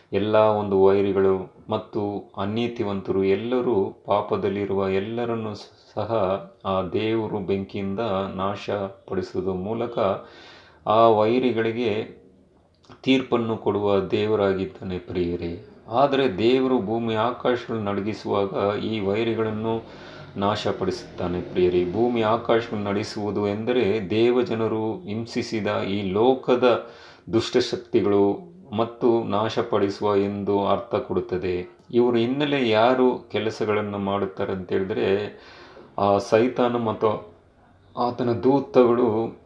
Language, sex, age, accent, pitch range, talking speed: Kannada, male, 30-49, native, 100-115 Hz, 80 wpm